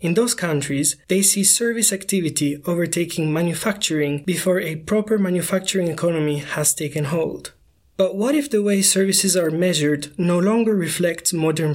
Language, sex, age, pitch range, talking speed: English, male, 20-39, 155-195 Hz, 150 wpm